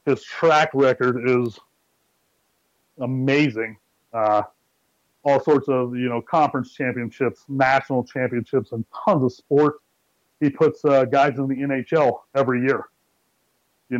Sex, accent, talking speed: male, American, 125 wpm